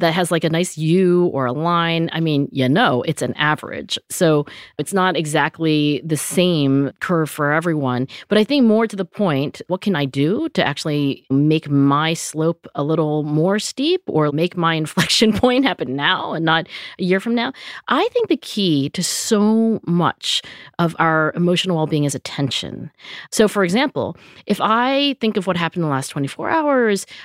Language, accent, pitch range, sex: English, American, 155-210 Hz, female